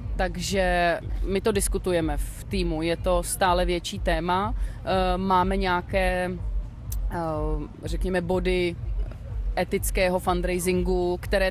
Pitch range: 170-195 Hz